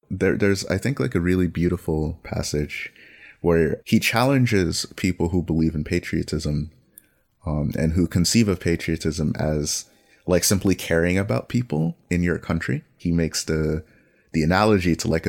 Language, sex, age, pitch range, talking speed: English, male, 30-49, 80-95 Hz, 155 wpm